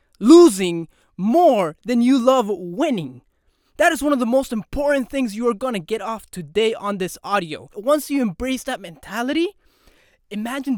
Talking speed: 160 wpm